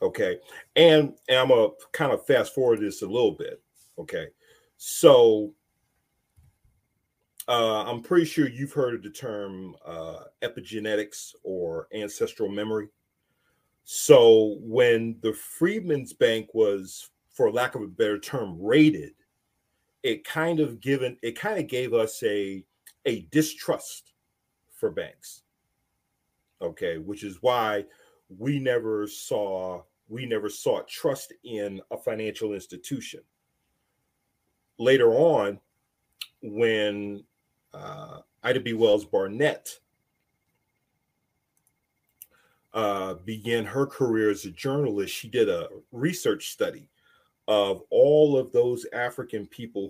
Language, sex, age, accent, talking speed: English, male, 40-59, American, 115 wpm